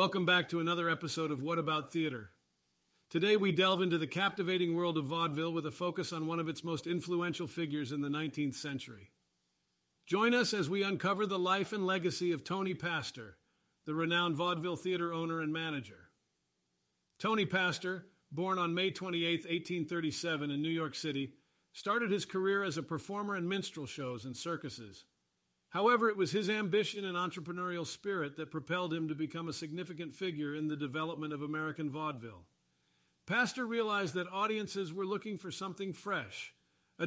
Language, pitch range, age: English, 155-190 Hz, 50-69